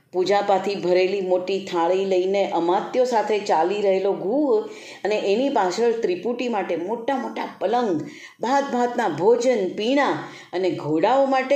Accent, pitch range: native, 170-240 Hz